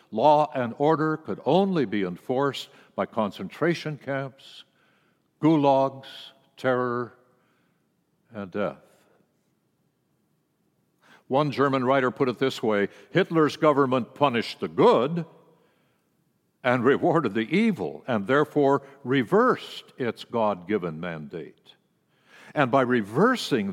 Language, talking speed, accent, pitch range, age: English, 100 wpm, American, 120-155 Hz, 60-79